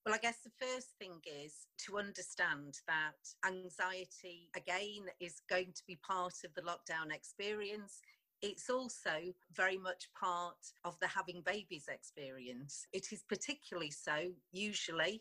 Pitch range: 170-200 Hz